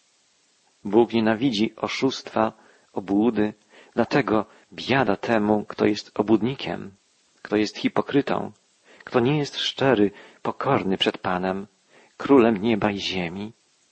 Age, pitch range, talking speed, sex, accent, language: 40-59, 105-130 Hz, 105 wpm, male, native, Polish